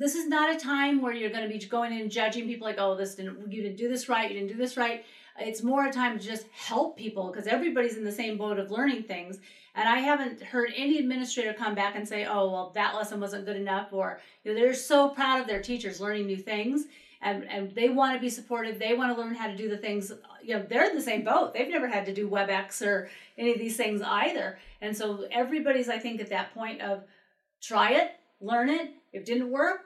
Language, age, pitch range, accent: English, 40-59, 205-260 Hz, American